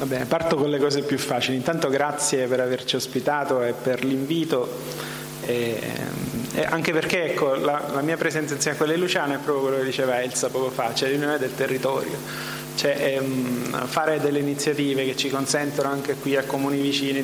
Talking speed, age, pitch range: 185 wpm, 30-49, 125-145 Hz